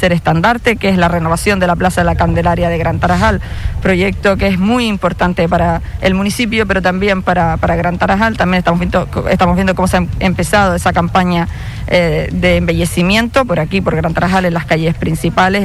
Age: 20-39